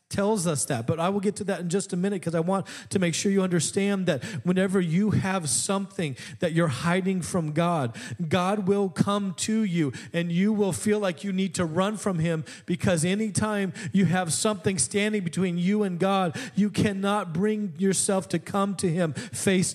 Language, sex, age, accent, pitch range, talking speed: English, male, 40-59, American, 165-220 Hz, 200 wpm